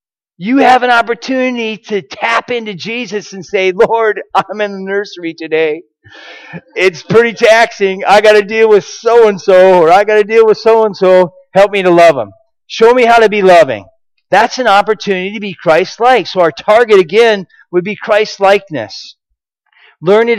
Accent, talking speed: American, 170 wpm